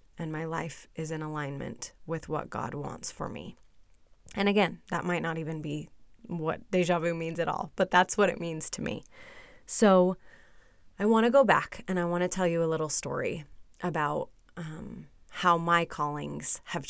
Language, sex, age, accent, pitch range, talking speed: English, female, 20-39, American, 155-180 Hz, 190 wpm